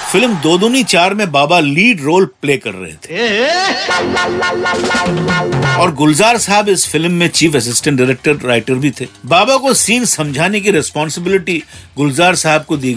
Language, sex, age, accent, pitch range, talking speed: Hindi, male, 50-69, native, 140-195 Hz, 155 wpm